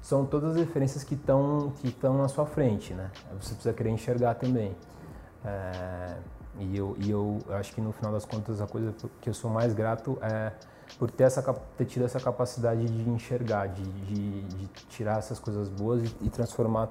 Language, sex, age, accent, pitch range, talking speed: Portuguese, male, 20-39, Brazilian, 100-115 Hz, 190 wpm